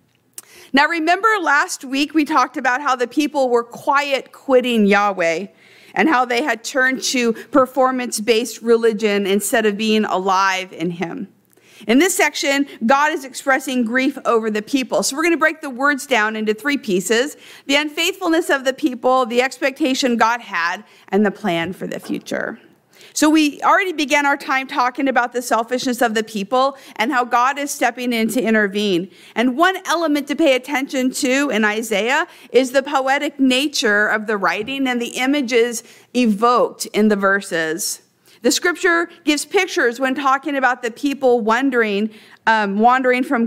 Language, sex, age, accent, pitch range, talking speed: English, female, 50-69, American, 225-285 Hz, 165 wpm